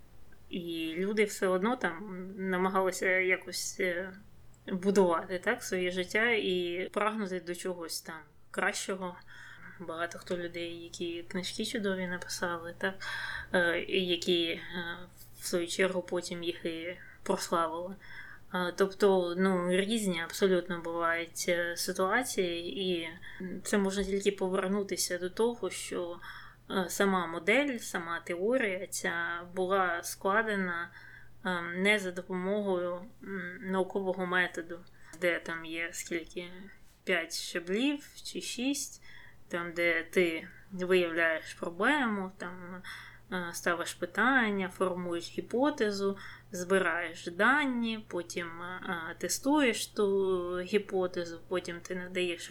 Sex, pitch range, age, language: female, 175-195 Hz, 20-39, Ukrainian